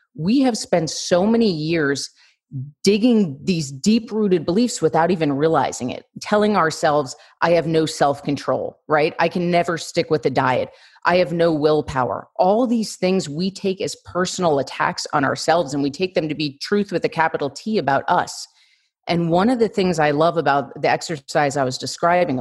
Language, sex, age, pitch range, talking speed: English, female, 30-49, 150-210 Hz, 180 wpm